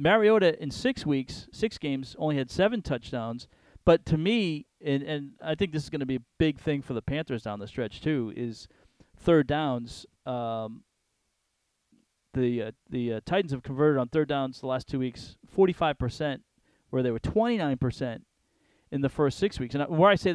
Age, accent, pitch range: 40-59, American, 125-155 Hz